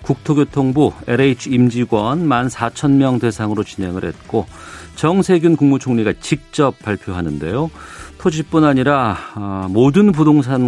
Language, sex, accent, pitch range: Korean, male, native, 100-145 Hz